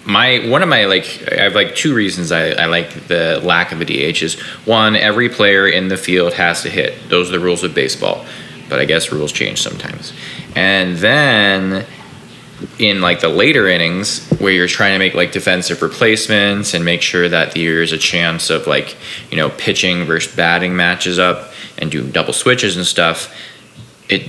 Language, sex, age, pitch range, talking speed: English, male, 20-39, 85-100 Hz, 195 wpm